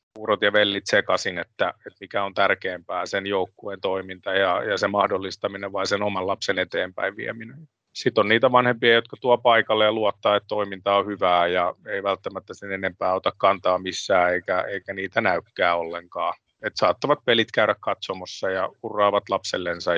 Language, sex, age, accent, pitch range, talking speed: Finnish, male, 30-49, native, 95-105 Hz, 170 wpm